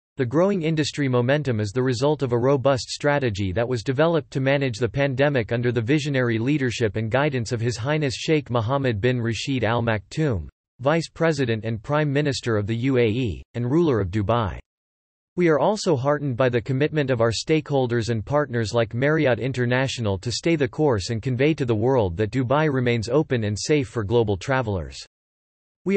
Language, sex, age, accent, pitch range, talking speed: English, male, 40-59, American, 115-150 Hz, 180 wpm